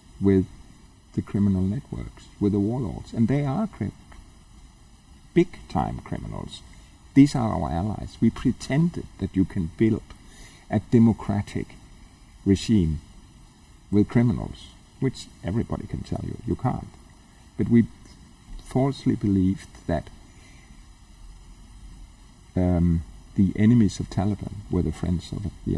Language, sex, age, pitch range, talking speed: German, male, 50-69, 85-115 Hz, 115 wpm